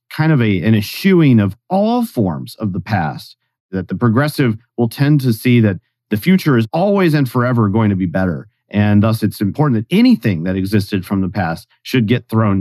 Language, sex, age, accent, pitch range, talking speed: English, male, 40-59, American, 105-140 Hz, 205 wpm